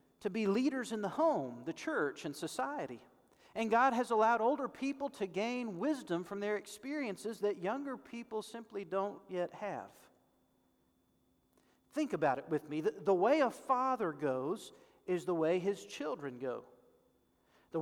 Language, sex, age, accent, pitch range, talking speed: English, male, 40-59, American, 175-250 Hz, 160 wpm